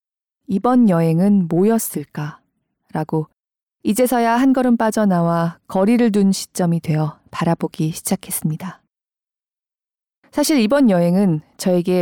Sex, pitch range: female, 170-240 Hz